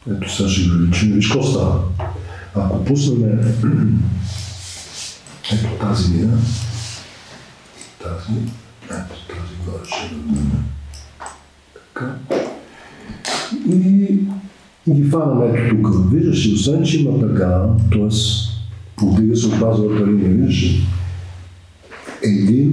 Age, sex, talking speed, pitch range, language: 50-69, male, 100 wpm, 100-135 Hz, Bulgarian